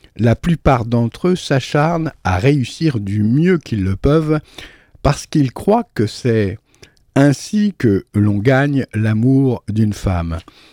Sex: male